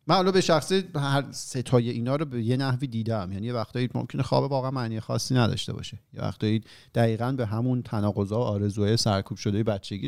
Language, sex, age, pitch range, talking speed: Persian, male, 40-59, 105-135 Hz, 185 wpm